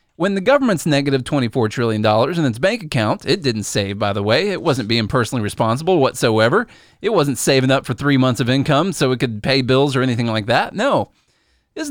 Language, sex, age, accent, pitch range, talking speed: English, male, 30-49, American, 140-205 Hz, 210 wpm